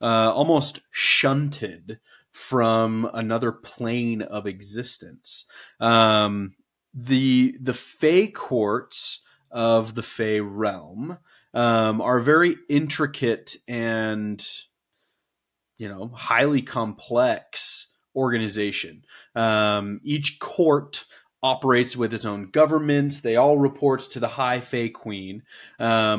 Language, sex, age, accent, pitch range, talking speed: English, male, 20-39, American, 110-135 Hz, 100 wpm